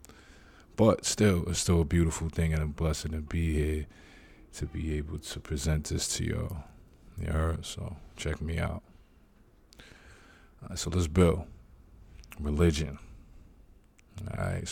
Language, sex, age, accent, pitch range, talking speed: English, male, 50-69, American, 75-90 Hz, 120 wpm